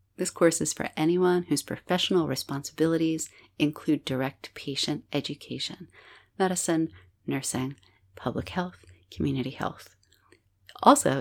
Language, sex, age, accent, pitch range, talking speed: English, female, 30-49, American, 130-175 Hz, 100 wpm